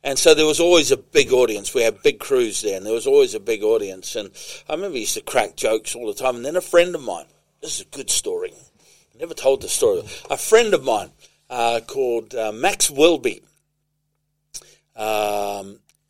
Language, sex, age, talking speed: English, male, 50-69, 215 wpm